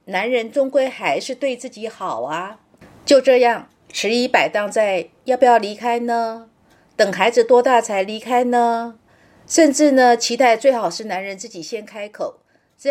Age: 50-69